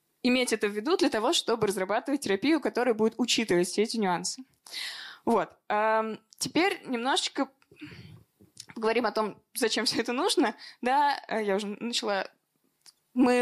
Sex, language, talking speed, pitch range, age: female, Russian, 135 wpm, 200-245 Hz, 20-39